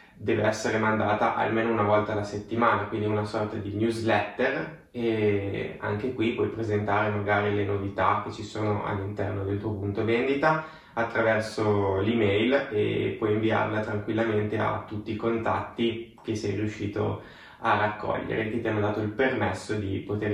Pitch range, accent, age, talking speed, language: 105-115 Hz, native, 20-39, 155 wpm, Italian